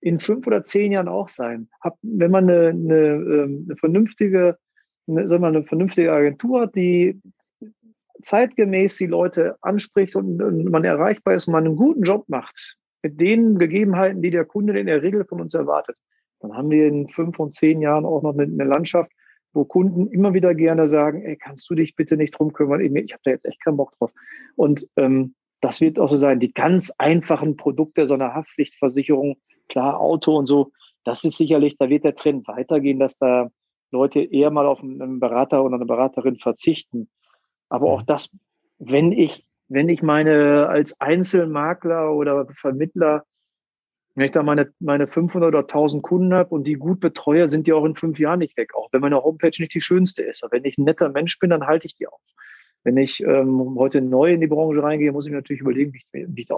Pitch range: 145-175 Hz